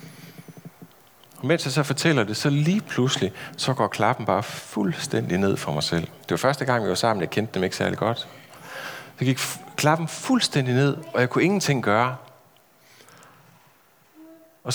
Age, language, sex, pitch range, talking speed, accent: 40-59, Danish, male, 90-145 Hz, 175 wpm, native